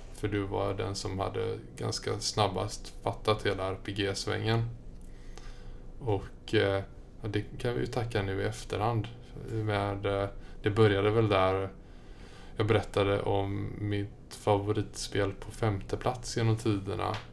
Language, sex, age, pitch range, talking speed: Swedish, male, 20-39, 100-110 Hz, 125 wpm